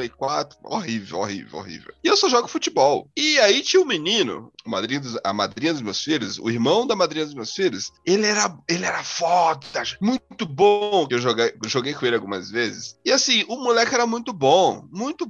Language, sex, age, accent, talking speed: Portuguese, male, 20-39, Brazilian, 190 wpm